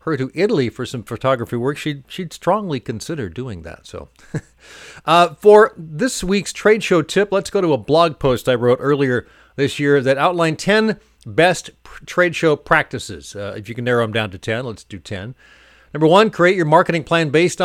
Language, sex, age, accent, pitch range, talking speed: English, male, 40-59, American, 110-165 Hz, 200 wpm